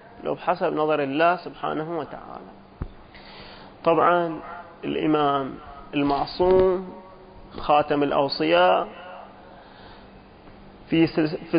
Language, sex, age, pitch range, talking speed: Arabic, male, 30-49, 150-190 Hz, 60 wpm